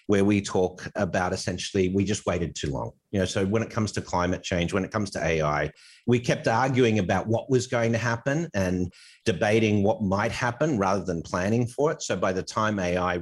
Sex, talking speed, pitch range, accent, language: male, 220 wpm, 90-110 Hz, Australian, English